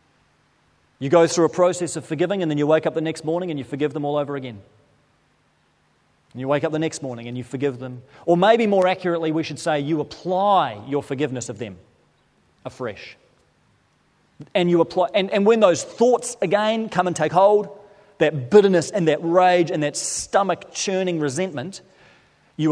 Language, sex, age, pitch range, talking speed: English, male, 30-49, 145-195 Hz, 185 wpm